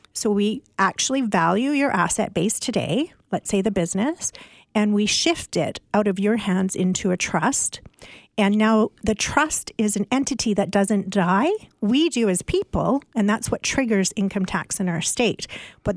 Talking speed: 175 wpm